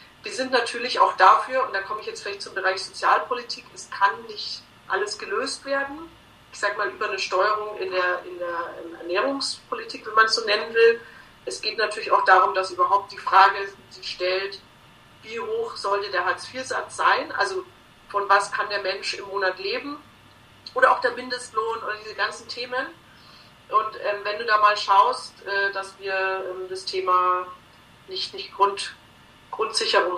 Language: German